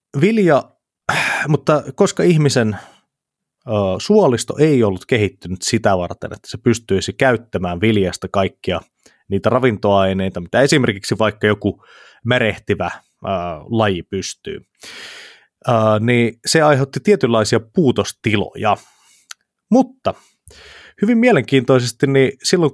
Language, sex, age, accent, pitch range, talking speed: Finnish, male, 30-49, native, 105-145 Hz, 100 wpm